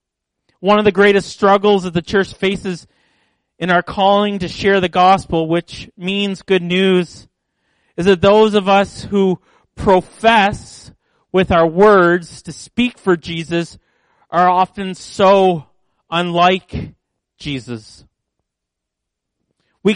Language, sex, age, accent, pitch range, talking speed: English, male, 30-49, American, 170-200 Hz, 120 wpm